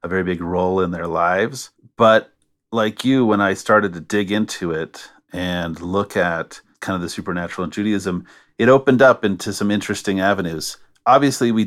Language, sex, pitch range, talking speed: English, male, 90-110 Hz, 180 wpm